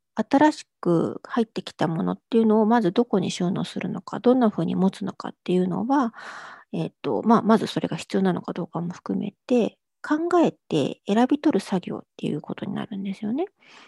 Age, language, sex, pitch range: 50-69, Japanese, female, 200-280 Hz